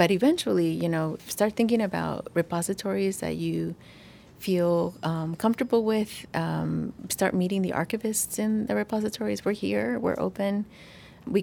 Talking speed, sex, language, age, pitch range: 140 wpm, female, English, 30-49, 160-200 Hz